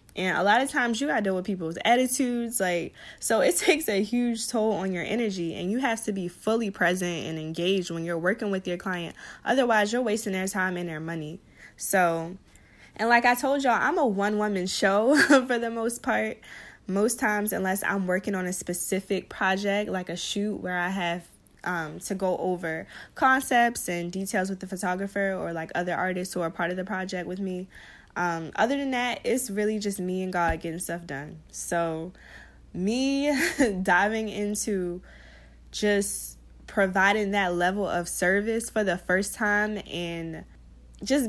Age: 20-39